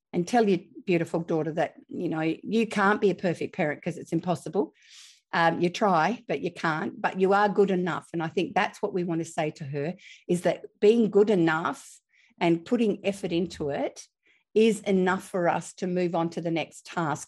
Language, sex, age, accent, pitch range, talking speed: English, female, 50-69, Australian, 165-200 Hz, 210 wpm